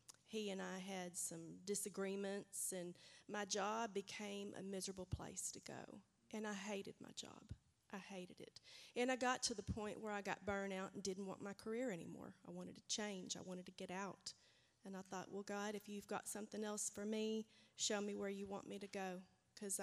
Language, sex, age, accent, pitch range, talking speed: English, female, 30-49, American, 190-225 Hz, 210 wpm